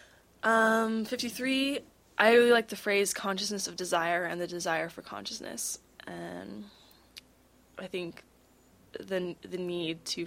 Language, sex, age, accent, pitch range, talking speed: English, female, 10-29, American, 165-190 Hz, 130 wpm